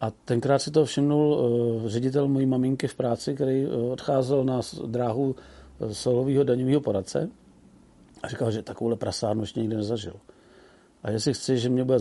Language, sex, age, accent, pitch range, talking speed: Czech, male, 40-59, native, 115-135 Hz, 160 wpm